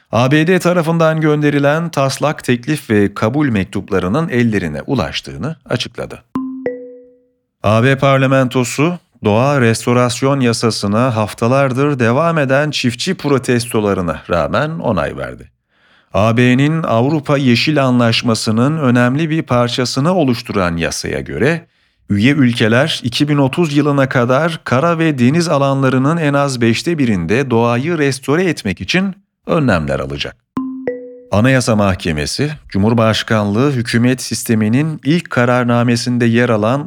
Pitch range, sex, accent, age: 115-150 Hz, male, native, 40-59